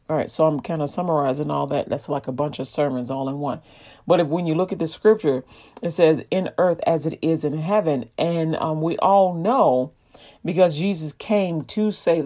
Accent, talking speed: American, 220 wpm